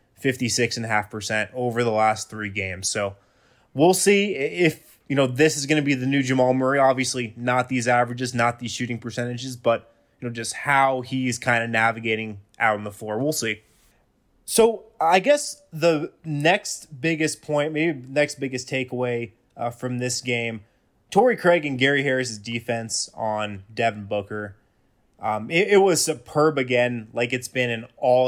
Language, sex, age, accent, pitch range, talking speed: English, male, 20-39, American, 115-135 Hz, 170 wpm